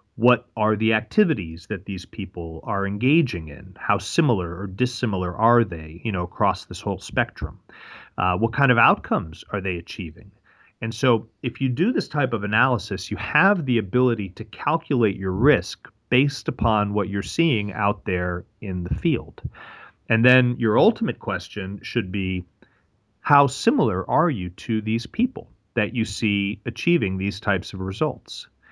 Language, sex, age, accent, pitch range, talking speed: English, male, 40-59, American, 100-130 Hz, 165 wpm